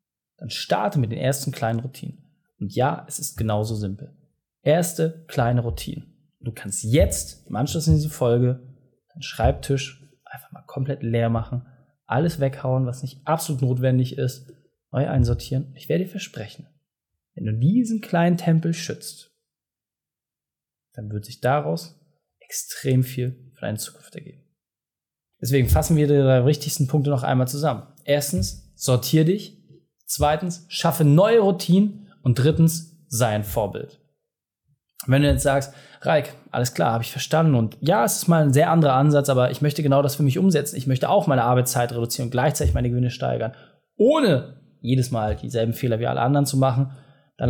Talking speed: 165 wpm